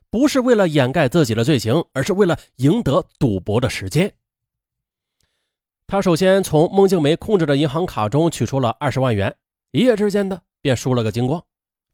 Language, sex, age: Chinese, male, 30-49